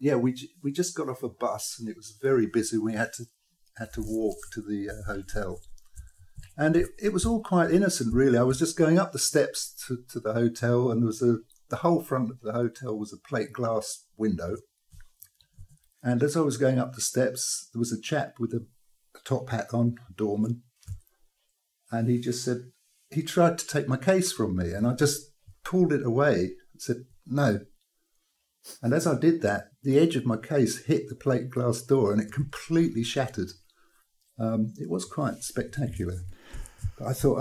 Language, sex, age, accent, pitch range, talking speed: English, male, 50-69, British, 110-145 Hz, 200 wpm